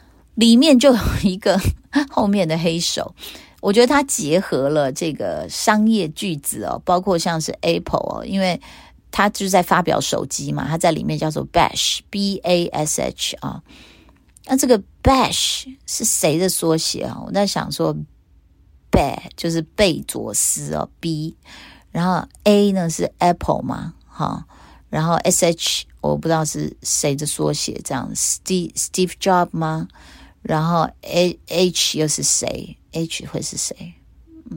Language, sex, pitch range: Chinese, female, 155-200 Hz